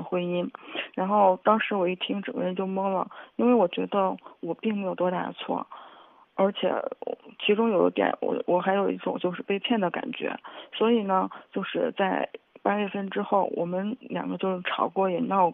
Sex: female